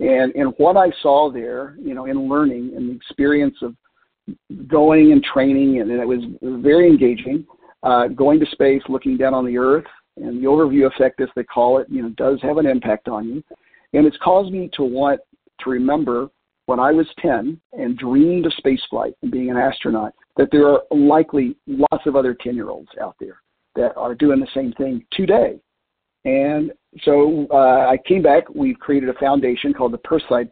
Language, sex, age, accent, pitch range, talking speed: English, male, 50-69, American, 125-155 Hz, 195 wpm